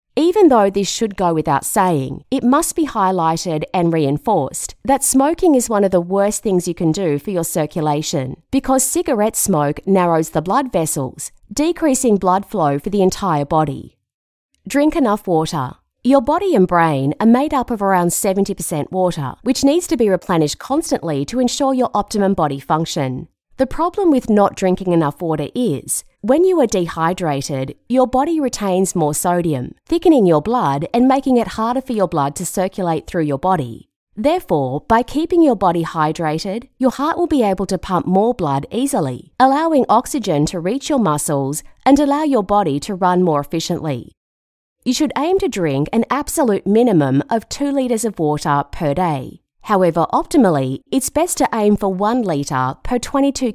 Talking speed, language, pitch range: 175 wpm, English, 160-255 Hz